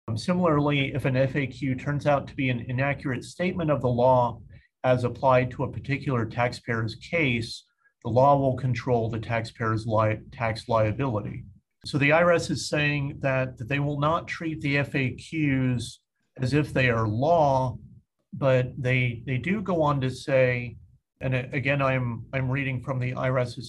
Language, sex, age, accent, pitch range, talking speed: English, male, 50-69, American, 125-145 Hz, 160 wpm